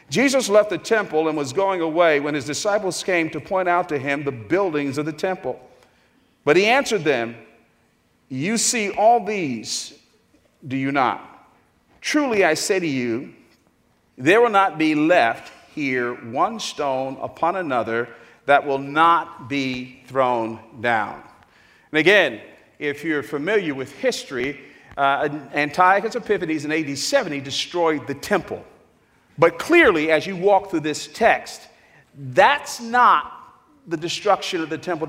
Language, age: English, 50-69